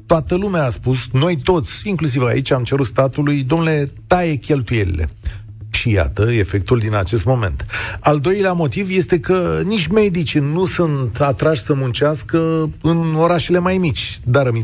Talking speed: 150 wpm